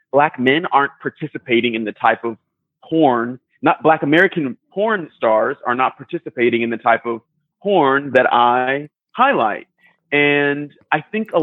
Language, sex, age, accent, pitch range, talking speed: English, male, 30-49, American, 115-150 Hz, 150 wpm